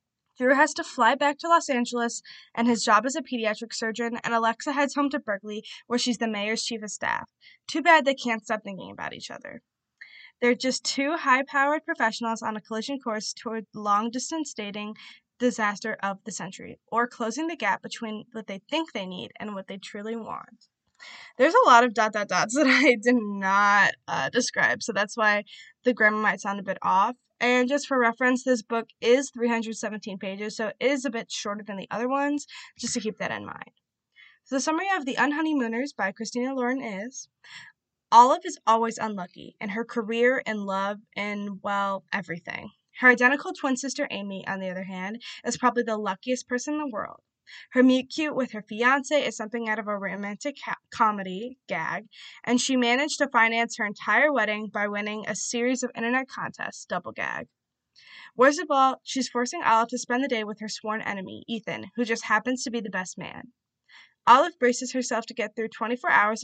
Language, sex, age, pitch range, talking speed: English, female, 10-29, 215-255 Hz, 195 wpm